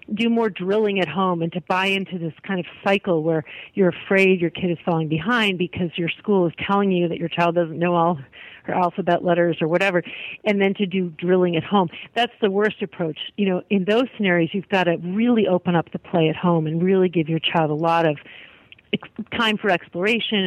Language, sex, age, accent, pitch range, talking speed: English, female, 40-59, American, 175-220 Hz, 220 wpm